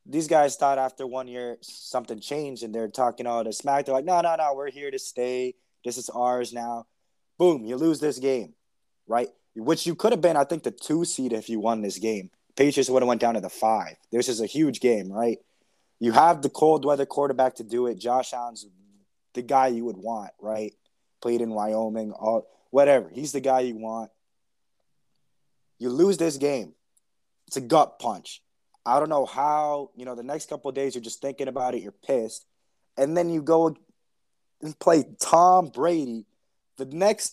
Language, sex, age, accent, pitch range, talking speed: English, male, 20-39, American, 120-155 Hz, 200 wpm